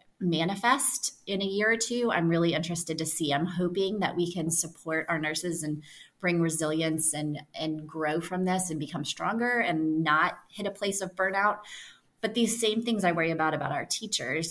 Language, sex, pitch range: English, female, 160-180 Hz